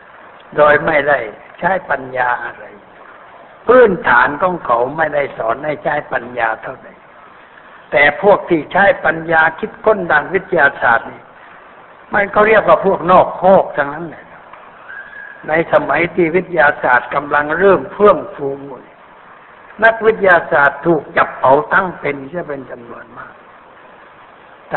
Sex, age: male, 60-79